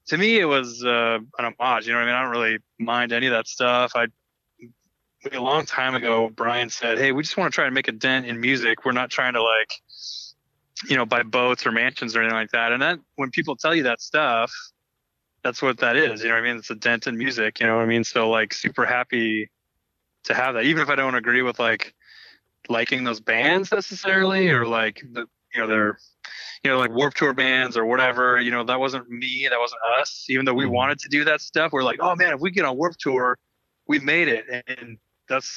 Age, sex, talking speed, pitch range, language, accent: 20-39, male, 245 wpm, 115-135 Hz, English, American